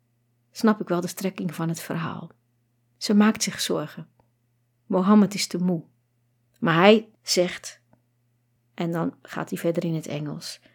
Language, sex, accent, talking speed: Dutch, female, Dutch, 150 wpm